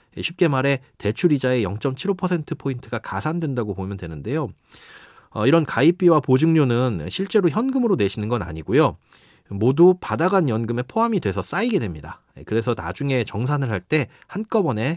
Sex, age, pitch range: male, 30-49, 110-165 Hz